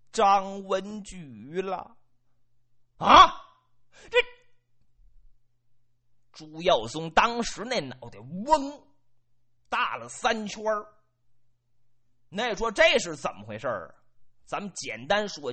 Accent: native